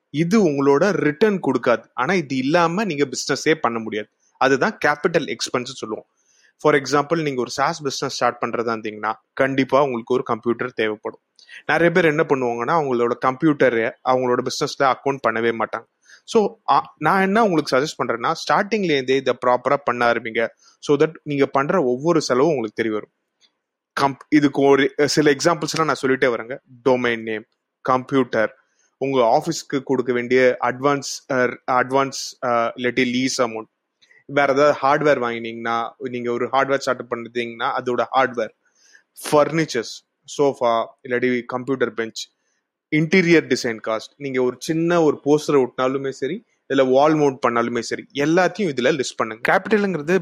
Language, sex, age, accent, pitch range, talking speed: Tamil, male, 30-49, native, 125-155 Hz, 140 wpm